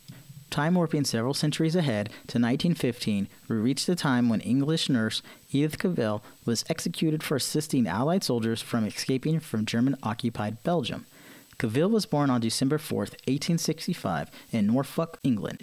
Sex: male